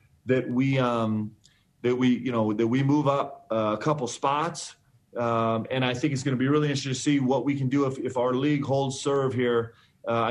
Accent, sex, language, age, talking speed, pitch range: American, male, English, 30-49, 220 wpm, 115-140 Hz